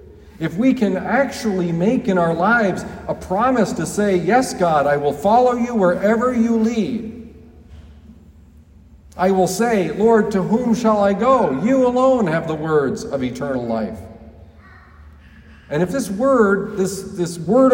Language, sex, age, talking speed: English, male, 50-69, 150 wpm